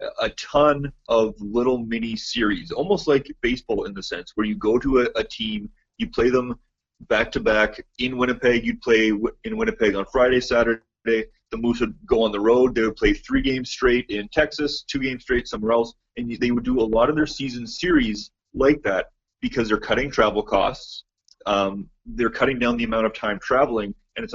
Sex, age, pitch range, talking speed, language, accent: male, 30-49, 105-130 Hz, 195 wpm, English, American